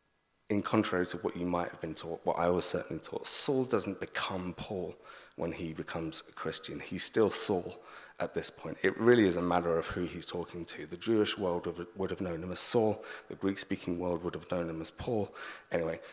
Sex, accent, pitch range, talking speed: male, British, 90-115 Hz, 215 wpm